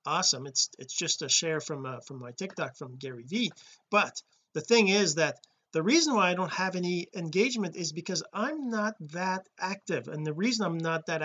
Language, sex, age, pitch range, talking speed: English, male, 40-59, 160-210 Hz, 210 wpm